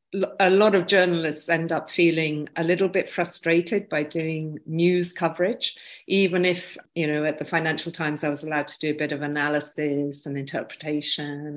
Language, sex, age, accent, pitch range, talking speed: English, female, 50-69, British, 150-170 Hz, 175 wpm